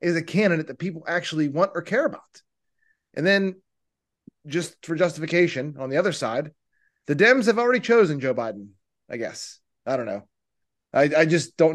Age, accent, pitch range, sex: 30-49, American, 160-255 Hz, male